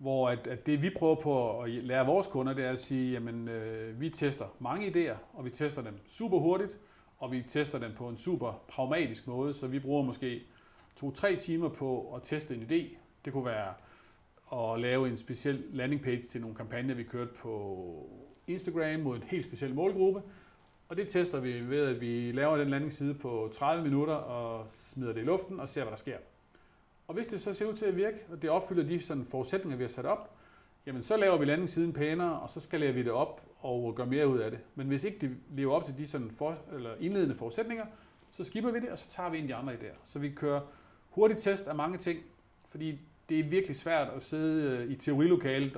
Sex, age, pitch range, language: male, 40-59, 125-165 Hz, Danish